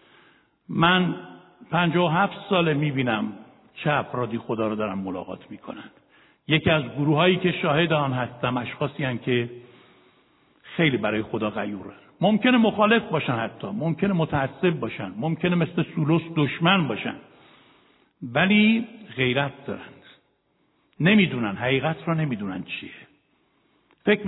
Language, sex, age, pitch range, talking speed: Persian, male, 60-79, 140-190 Hz, 130 wpm